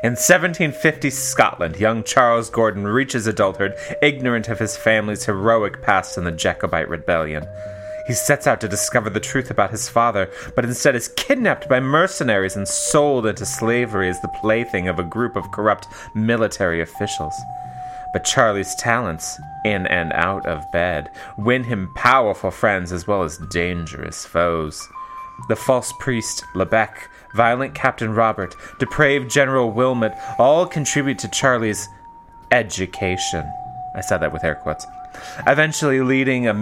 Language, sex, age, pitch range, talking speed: English, male, 30-49, 105-145 Hz, 145 wpm